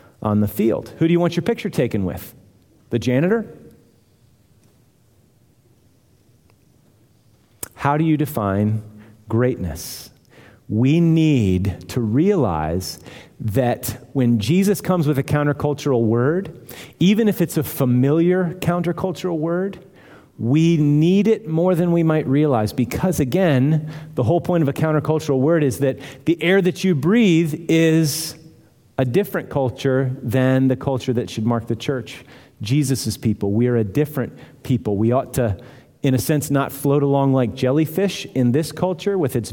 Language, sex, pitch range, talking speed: English, male, 110-150 Hz, 145 wpm